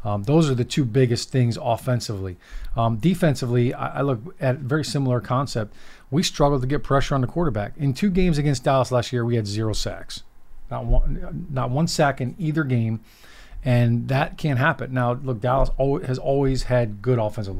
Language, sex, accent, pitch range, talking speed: English, male, American, 115-135 Hz, 200 wpm